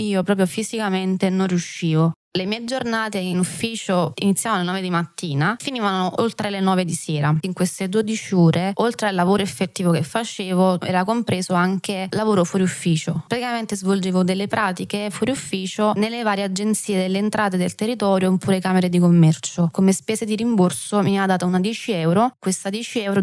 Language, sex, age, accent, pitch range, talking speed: Italian, female, 20-39, native, 180-205 Hz, 175 wpm